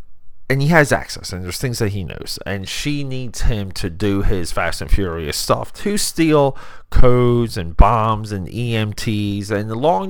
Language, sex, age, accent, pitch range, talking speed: English, male, 30-49, American, 95-130 Hz, 180 wpm